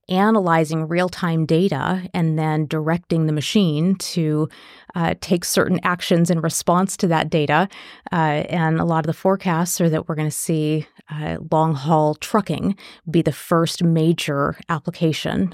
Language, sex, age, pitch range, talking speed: English, female, 30-49, 155-185 Hz, 155 wpm